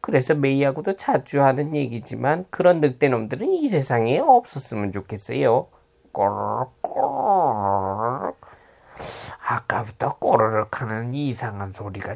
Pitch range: 125-180 Hz